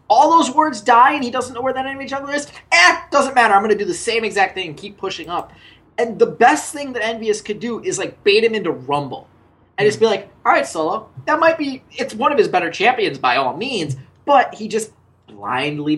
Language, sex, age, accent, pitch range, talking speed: English, male, 20-39, American, 175-290 Hz, 250 wpm